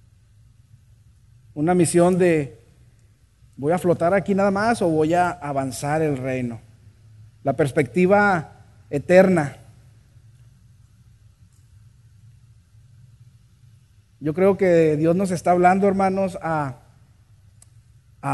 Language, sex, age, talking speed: Spanish, male, 30-49, 90 wpm